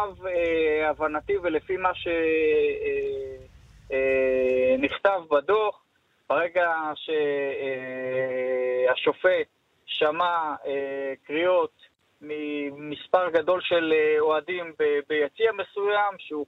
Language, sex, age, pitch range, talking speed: Hebrew, male, 20-39, 155-205 Hz, 60 wpm